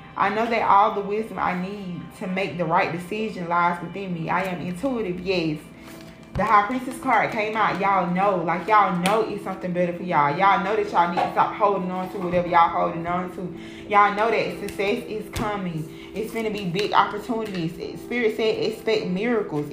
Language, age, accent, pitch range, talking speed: English, 20-39, American, 175-205 Hz, 205 wpm